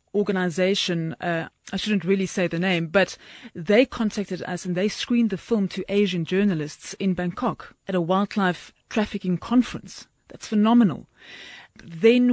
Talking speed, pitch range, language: 145 wpm, 180-210 Hz, English